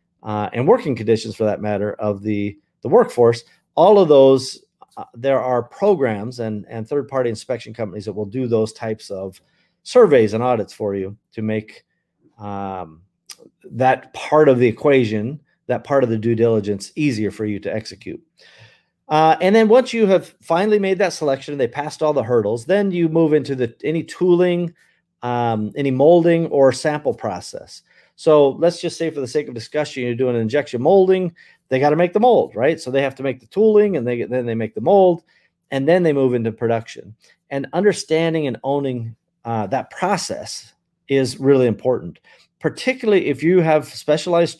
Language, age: English, 40-59